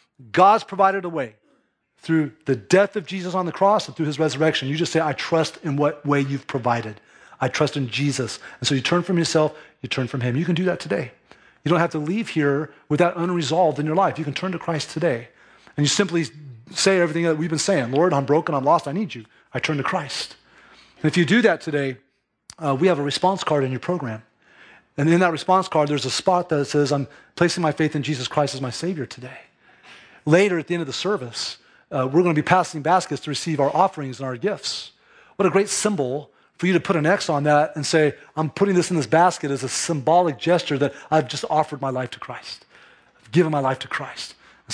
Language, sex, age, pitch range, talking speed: English, male, 30-49, 145-180 Hz, 240 wpm